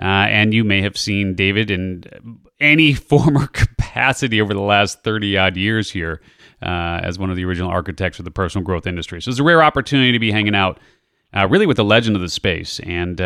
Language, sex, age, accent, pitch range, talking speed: English, male, 30-49, American, 95-115 Hz, 215 wpm